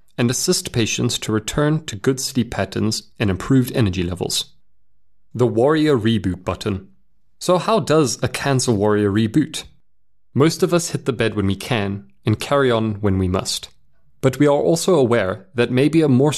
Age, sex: 30-49, male